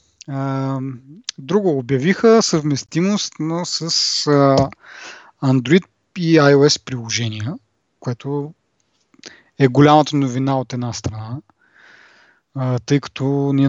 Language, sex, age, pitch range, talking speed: Bulgarian, male, 20-39, 130-165 Hz, 95 wpm